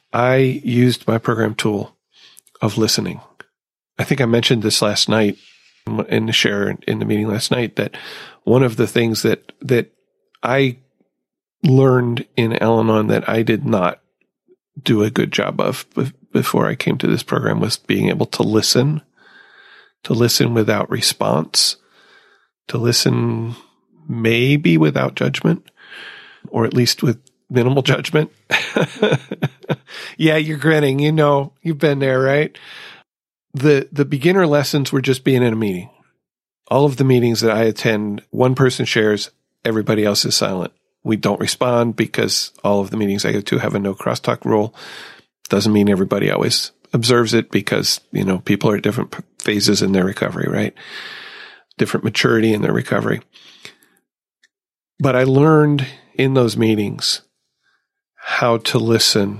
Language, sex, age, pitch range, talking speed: English, male, 40-59, 110-140 Hz, 150 wpm